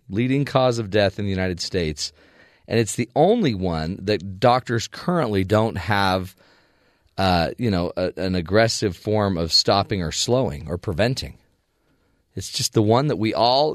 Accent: American